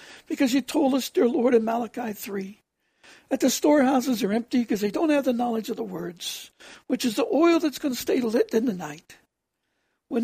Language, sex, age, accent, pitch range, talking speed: English, male, 60-79, American, 220-265 Hz, 210 wpm